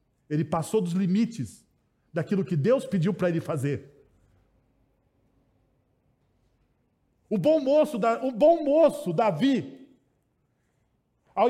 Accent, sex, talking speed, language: Brazilian, male, 100 wpm, Portuguese